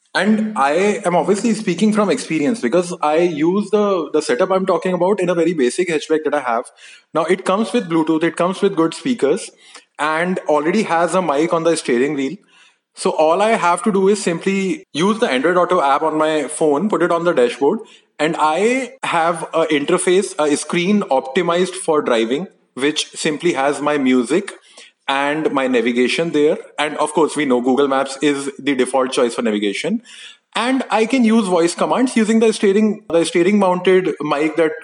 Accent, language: Indian, English